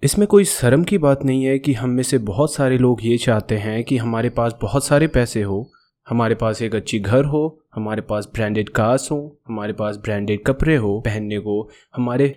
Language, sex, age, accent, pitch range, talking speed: Hindi, male, 30-49, native, 120-155 Hz, 210 wpm